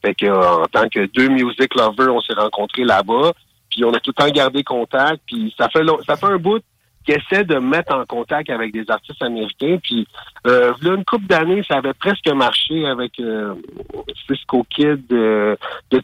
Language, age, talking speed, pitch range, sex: French, 50-69, 215 wpm, 120-165 Hz, male